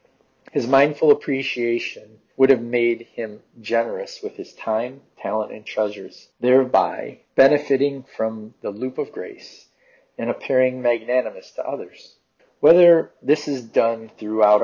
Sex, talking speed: male, 125 wpm